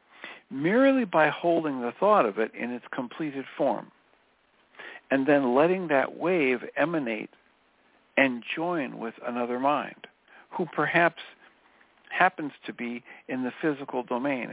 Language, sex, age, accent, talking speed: English, male, 60-79, American, 130 wpm